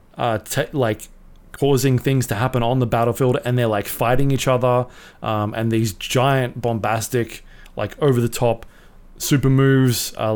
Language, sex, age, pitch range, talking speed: English, male, 20-39, 110-135 Hz, 160 wpm